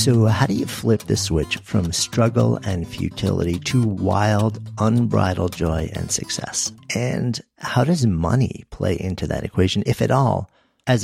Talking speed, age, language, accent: 160 wpm, 50-69, English, American